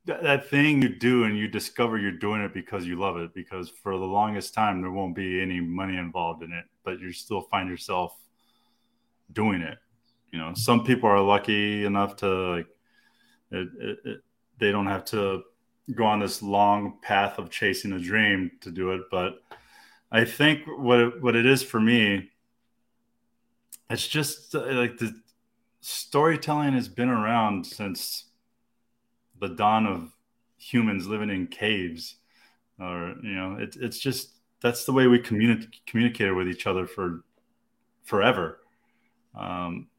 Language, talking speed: English, 160 wpm